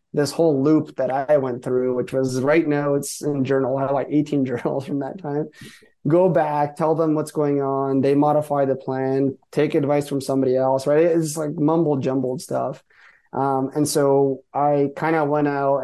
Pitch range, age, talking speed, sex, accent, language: 135-155 Hz, 20-39, 195 wpm, male, American, English